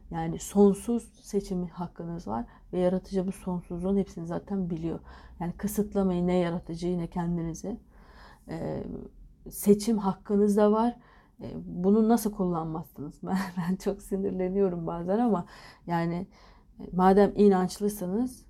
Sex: female